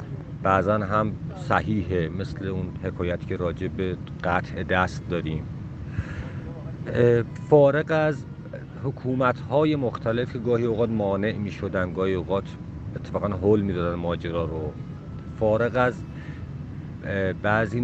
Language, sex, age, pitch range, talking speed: English, male, 50-69, 95-125 Hz, 105 wpm